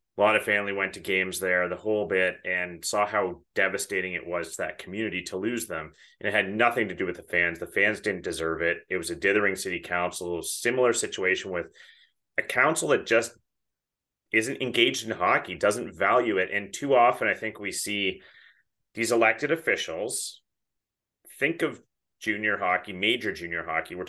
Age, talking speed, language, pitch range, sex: 30-49, 185 wpm, English, 90-105 Hz, male